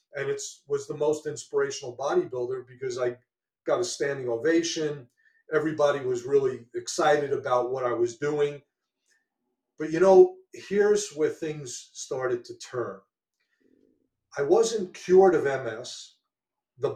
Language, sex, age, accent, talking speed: English, male, 40-59, American, 130 wpm